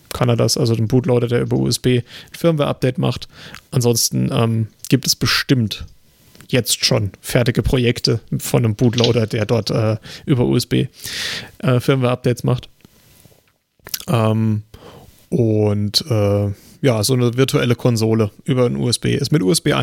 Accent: German